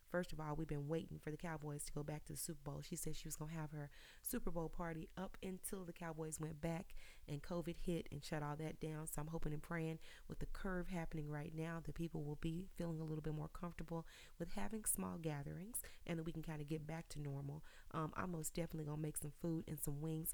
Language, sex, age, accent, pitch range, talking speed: English, female, 30-49, American, 150-170 Hz, 260 wpm